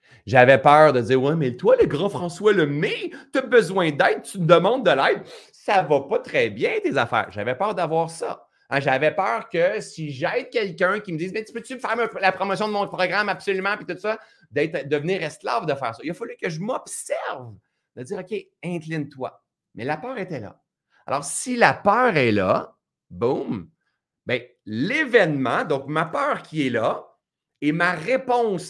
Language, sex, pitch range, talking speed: French, male, 130-195 Hz, 205 wpm